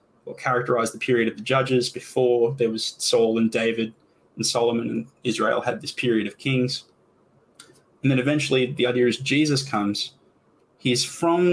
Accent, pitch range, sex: Australian, 120-140 Hz, male